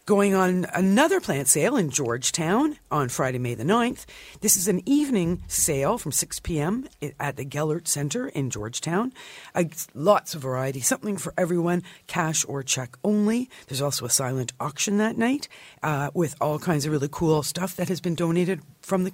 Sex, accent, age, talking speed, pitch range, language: female, American, 50-69, 180 wpm, 140-205 Hz, English